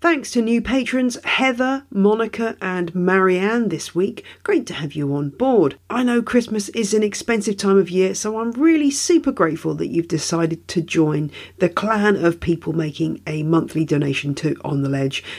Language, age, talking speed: English, 40-59, 185 wpm